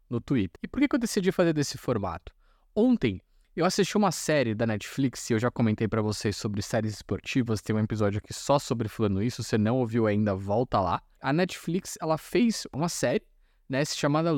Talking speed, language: 205 wpm, Portuguese